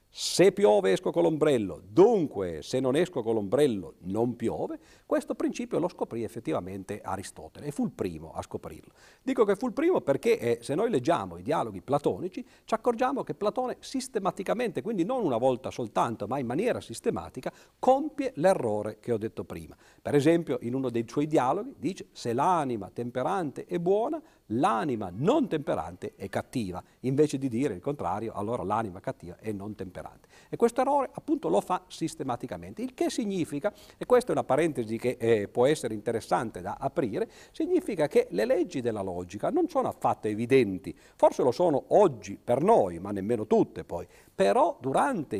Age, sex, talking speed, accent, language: 50-69, male, 175 wpm, native, Italian